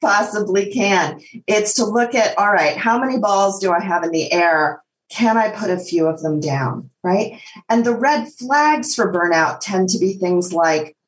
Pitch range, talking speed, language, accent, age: 155-215 Hz, 200 wpm, English, American, 40-59